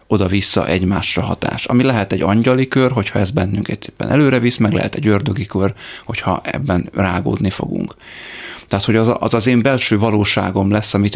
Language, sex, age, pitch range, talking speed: Hungarian, male, 30-49, 100-115 Hz, 185 wpm